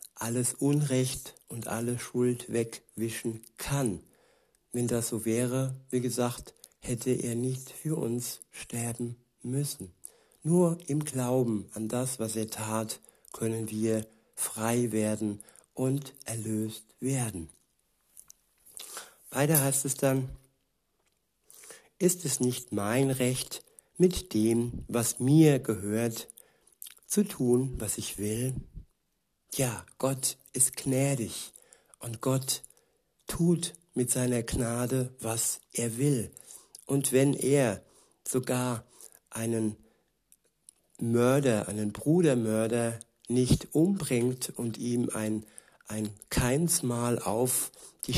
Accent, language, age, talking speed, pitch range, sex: German, German, 60-79, 105 wpm, 115-135 Hz, male